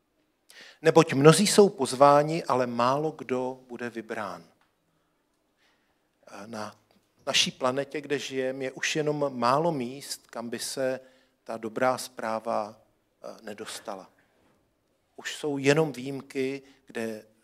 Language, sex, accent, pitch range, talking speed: Czech, male, native, 115-140 Hz, 105 wpm